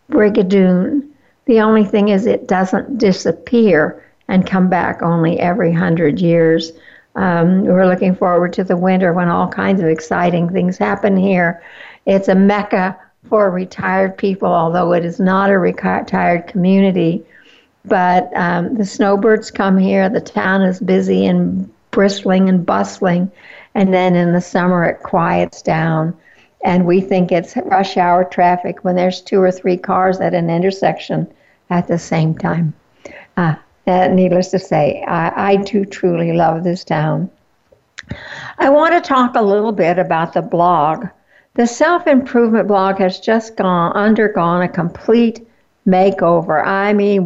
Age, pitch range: 60-79, 175-200 Hz